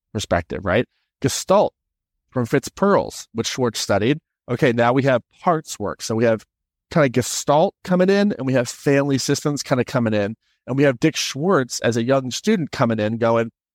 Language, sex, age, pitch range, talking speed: English, male, 30-49, 115-145 Hz, 190 wpm